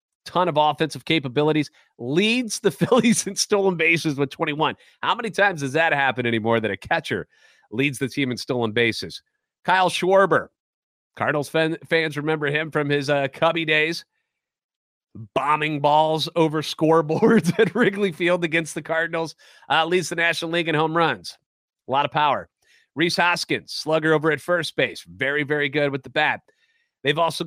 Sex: male